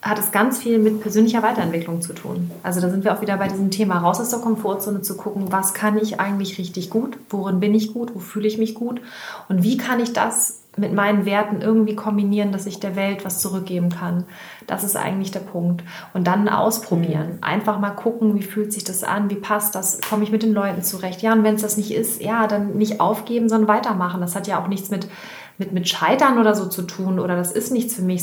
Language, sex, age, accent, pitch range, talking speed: German, female, 30-49, German, 185-220 Hz, 240 wpm